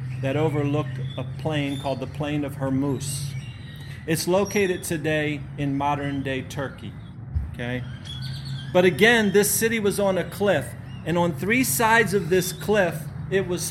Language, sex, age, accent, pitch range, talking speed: English, male, 40-59, American, 125-180 Hz, 145 wpm